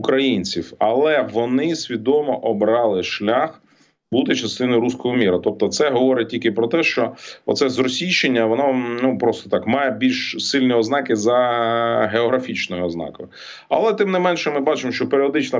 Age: 30-49